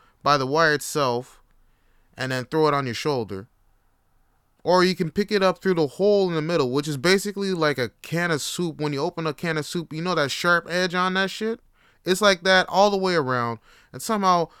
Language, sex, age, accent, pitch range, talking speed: English, male, 20-39, American, 125-180 Hz, 225 wpm